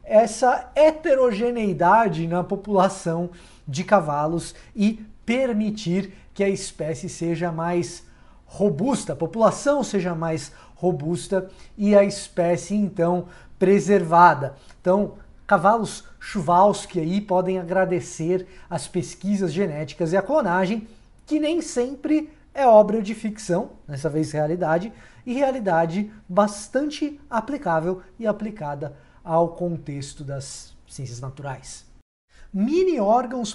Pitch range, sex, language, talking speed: 170-225 Hz, male, Portuguese, 105 wpm